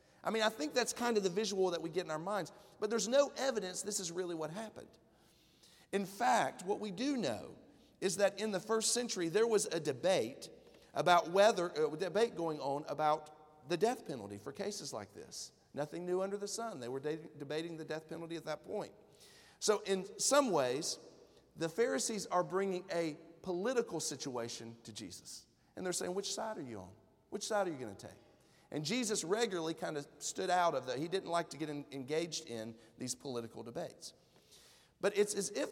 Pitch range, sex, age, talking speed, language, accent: 155-215 Hz, male, 40-59, 205 wpm, English, American